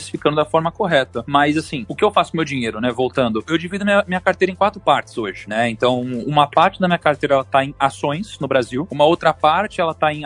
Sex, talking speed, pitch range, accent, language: male, 255 wpm, 150-200 Hz, Brazilian, Portuguese